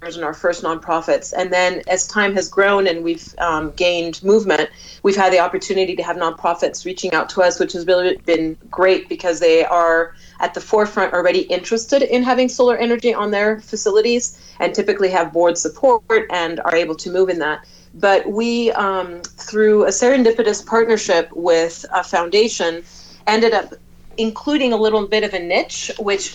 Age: 30-49